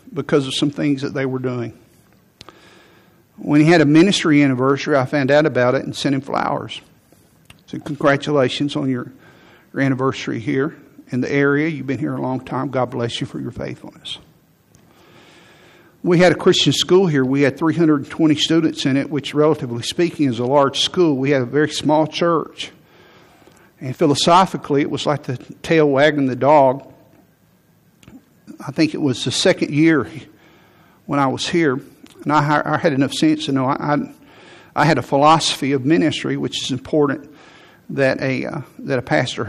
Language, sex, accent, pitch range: English, male, American, 135-155 Hz